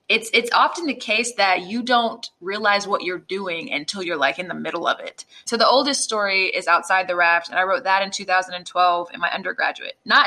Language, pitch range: English, 180-225 Hz